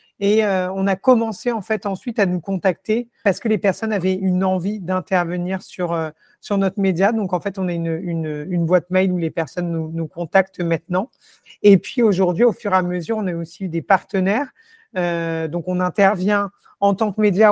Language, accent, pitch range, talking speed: French, French, 180-205 Hz, 215 wpm